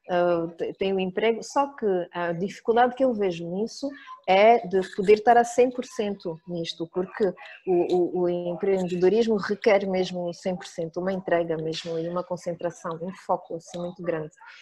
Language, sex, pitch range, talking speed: Portuguese, female, 180-230 Hz, 155 wpm